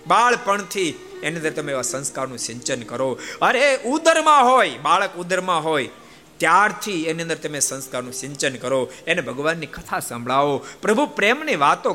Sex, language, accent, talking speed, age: male, Gujarati, native, 60 wpm, 50-69